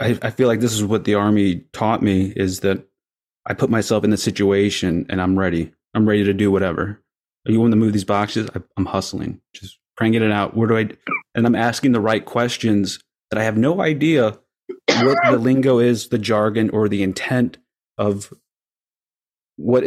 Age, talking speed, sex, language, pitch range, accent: 30-49, 195 wpm, male, English, 105-120 Hz, American